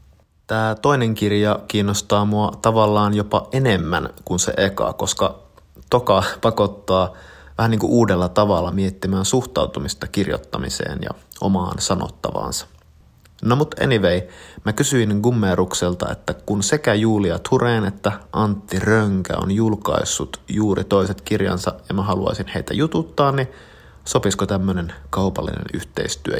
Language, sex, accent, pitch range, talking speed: Finnish, male, native, 90-105 Hz, 120 wpm